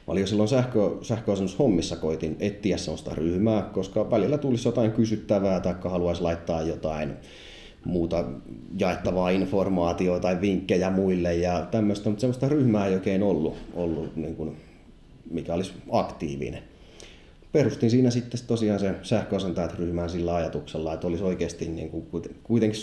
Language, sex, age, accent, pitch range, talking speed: Finnish, male, 30-49, native, 85-105 Hz, 135 wpm